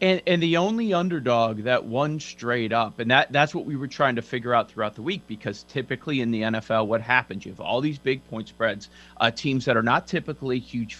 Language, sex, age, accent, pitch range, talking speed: English, male, 40-59, American, 115-145 Hz, 235 wpm